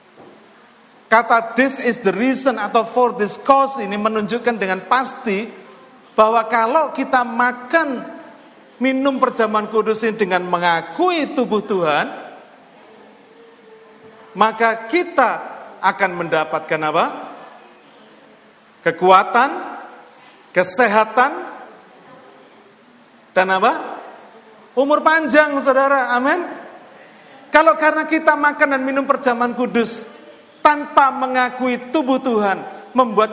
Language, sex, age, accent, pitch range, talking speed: Indonesian, male, 50-69, native, 225-275 Hz, 90 wpm